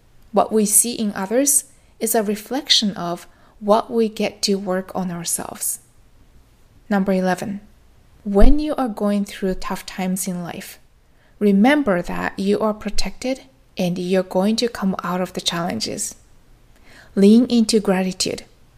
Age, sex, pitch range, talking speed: 20-39, female, 195-230 Hz, 140 wpm